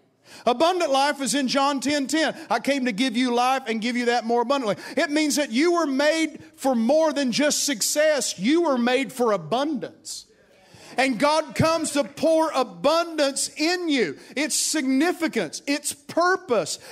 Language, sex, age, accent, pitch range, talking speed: English, male, 50-69, American, 255-345 Hz, 165 wpm